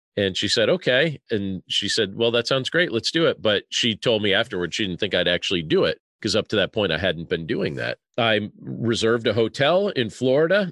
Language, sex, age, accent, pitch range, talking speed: English, male, 40-59, American, 105-135 Hz, 235 wpm